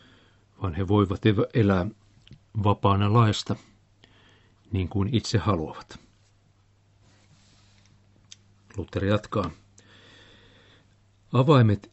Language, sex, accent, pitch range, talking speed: Finnish, male, native, 100-110 Hz, 65 wpm